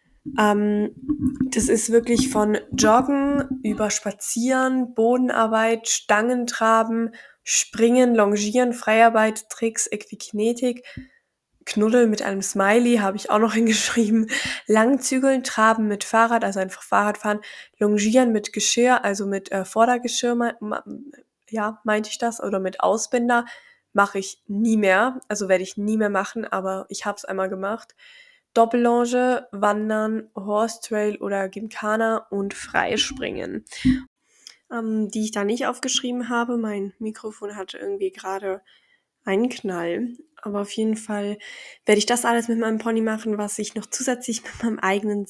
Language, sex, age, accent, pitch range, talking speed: German, female, 10-29, German, 205-240 Hz, 135 wpm